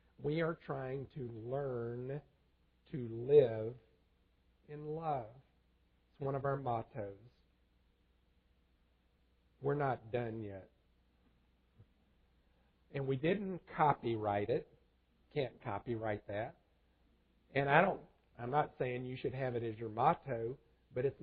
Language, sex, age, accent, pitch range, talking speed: English, male, 50-69, American, 100-140 Hz, 115 wpm